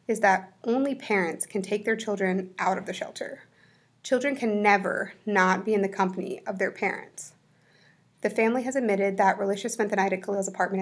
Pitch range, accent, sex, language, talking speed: 190-230 Hz, American, female, English, 195 wpm